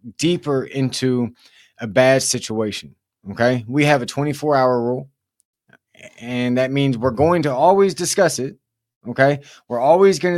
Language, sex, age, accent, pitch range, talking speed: English, male, 30-49, American, 125-155 Hz, 145 wpm